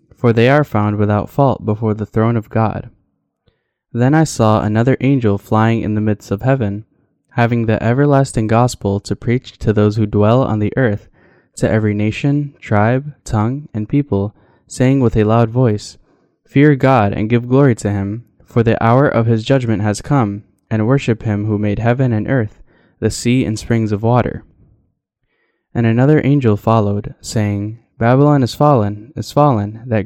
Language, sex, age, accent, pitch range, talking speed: English, male, 10-29, American, 105-125 Hz, 175 wpm